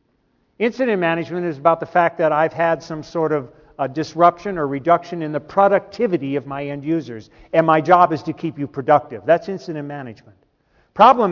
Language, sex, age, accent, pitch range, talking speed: English, male, 50-69, American, 145-180 Hz, 185 wpm